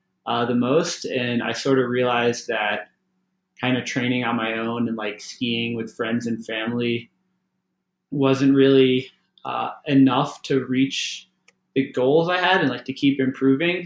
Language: English